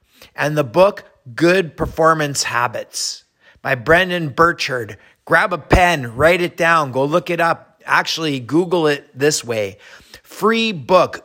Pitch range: 130-175 Hz